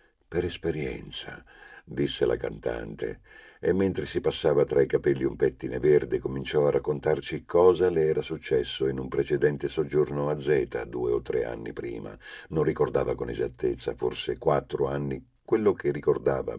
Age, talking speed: 50-69, 155 wpm